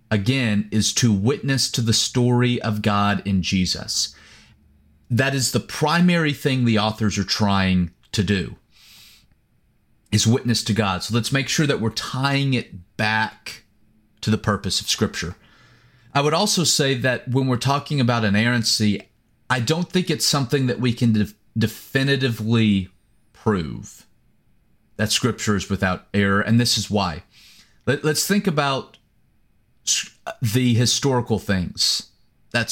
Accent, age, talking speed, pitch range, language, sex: American, 30-49, 140 wpm, 105-130 Hz, English, male